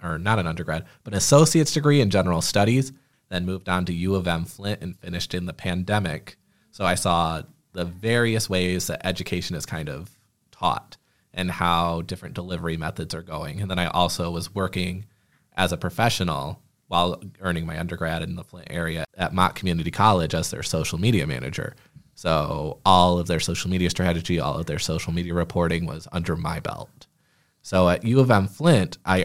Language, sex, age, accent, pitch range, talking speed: English, male, 20-39, American, 85-105 Hz, 190 wpm